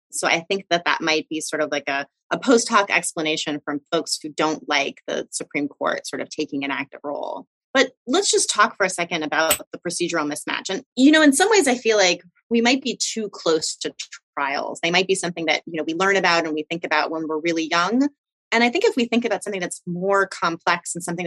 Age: 30-49